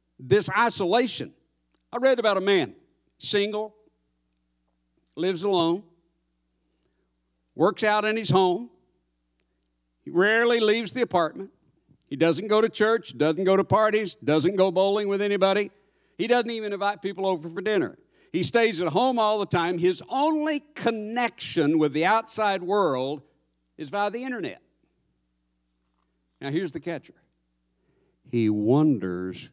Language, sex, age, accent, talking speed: English, male, 60-79, American, 135 wpm